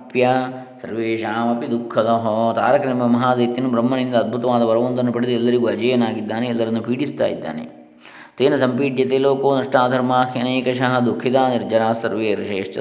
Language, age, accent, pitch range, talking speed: Kannada, 20-39, native, 115-130 Hz, 105 wpm